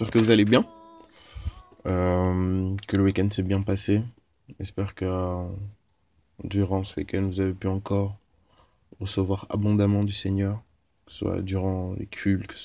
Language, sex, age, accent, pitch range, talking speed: French, male, 20-39, French, 95-105 Hz, 155 wpm